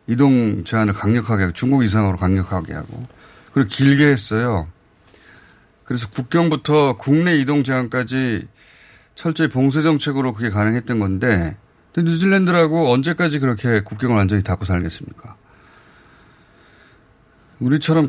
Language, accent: Korean, native